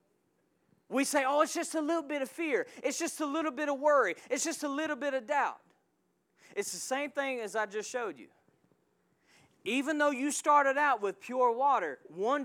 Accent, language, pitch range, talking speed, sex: American, English, 225-285 Hz, 200 wpm, male